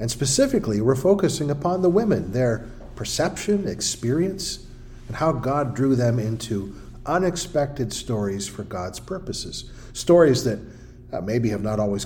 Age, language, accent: 50-69, English, American